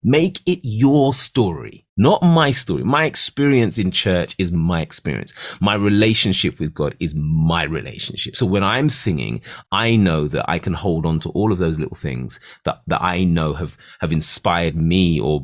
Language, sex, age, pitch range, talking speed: English, male, 30-49, 85-125 Hz, 185 wpm